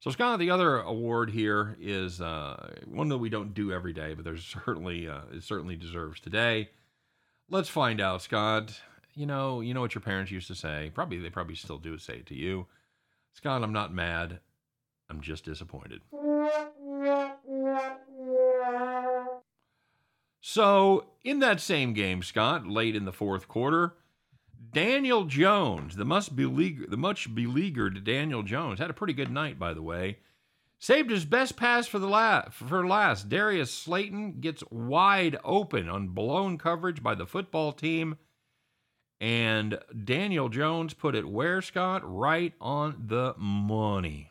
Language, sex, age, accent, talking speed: English, male, 40-59, American, 155 wpm